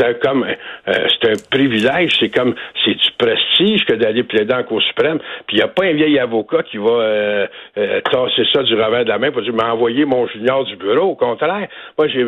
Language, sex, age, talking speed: French, male, 60-79, 225 wpm